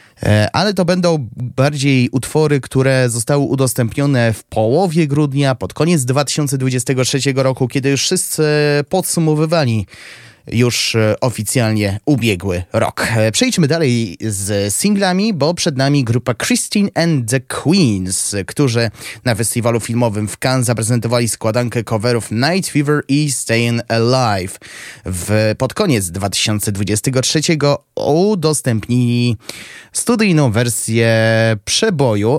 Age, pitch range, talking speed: 20-39, 110-145 Hz, 105 wpm